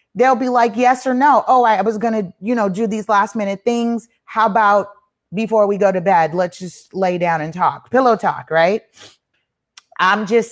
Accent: American